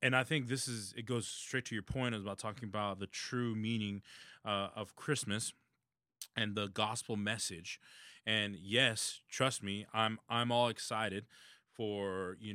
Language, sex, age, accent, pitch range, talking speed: English, male, 20-39, American, 110-130 Hz, 165 wpm